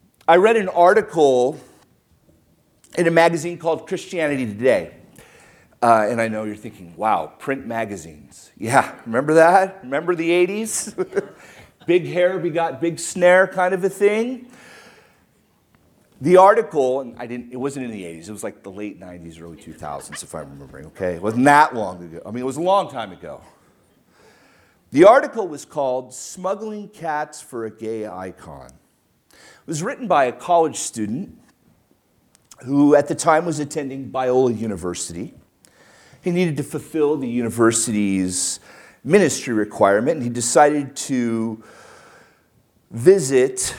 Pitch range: 110-170 Hz